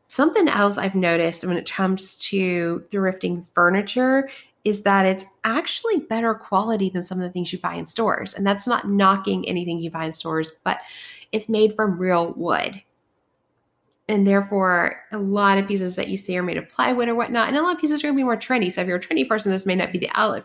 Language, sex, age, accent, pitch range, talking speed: English, female, 30-49, American, 180-220 Hz, 230 wpm